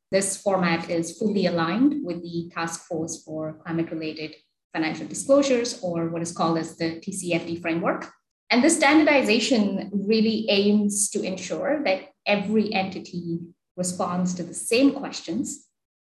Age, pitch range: 20-39, 170-220 Hz